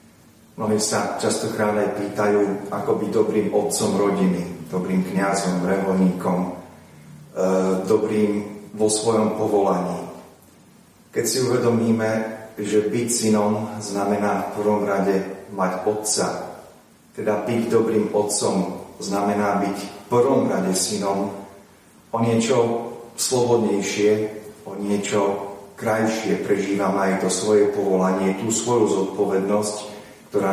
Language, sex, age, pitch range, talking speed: Slovak, male, 40-59, 95-110 Hz, 105 wpm